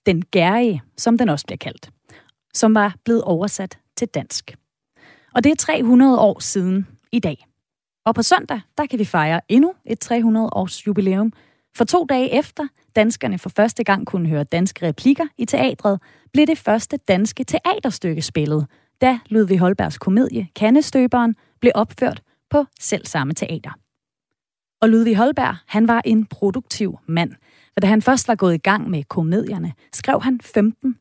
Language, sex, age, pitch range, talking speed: Danish, female, 30-49, 185-245 Hz, 160 wpm